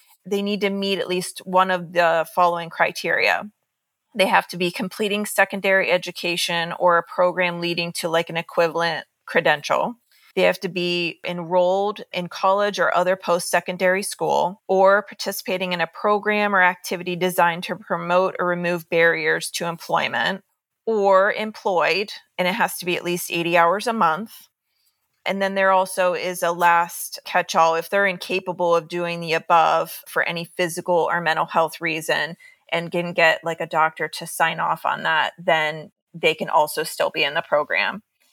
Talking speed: 170 wpm